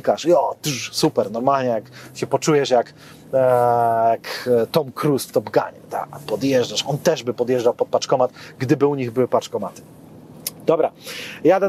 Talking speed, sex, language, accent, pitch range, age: 145 wpm, male, Polish, native, 130-165 Hz, 30-49